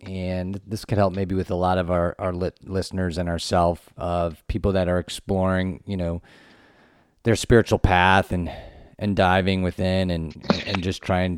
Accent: American